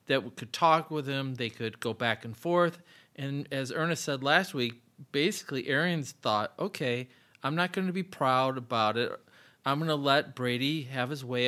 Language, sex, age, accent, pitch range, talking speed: English, male, 40-59, American, 120-150 Hz, 200 wpm